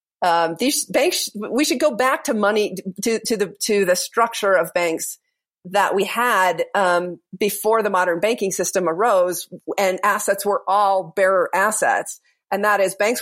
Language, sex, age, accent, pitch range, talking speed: English, female, 40-59, American, 185-240 Hz, 170 wpm